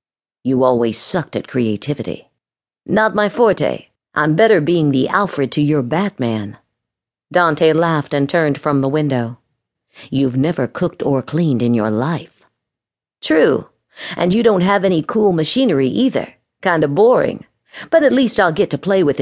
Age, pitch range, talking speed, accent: 50-69, 135-190 Hz, 160 wpm, American